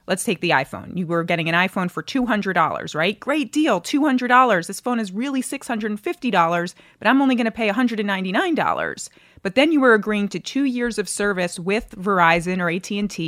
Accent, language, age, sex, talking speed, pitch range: American, English, 30-49, female, 185 wpm, 170-230 Hz